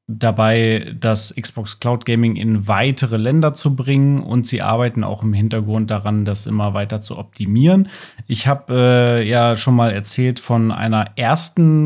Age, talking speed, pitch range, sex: 30-49, 160 wpm, 110-140 Hz, male